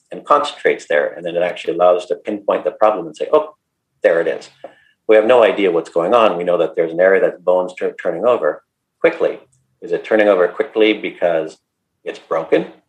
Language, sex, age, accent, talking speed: English, male, 50-69, American, 215 wpm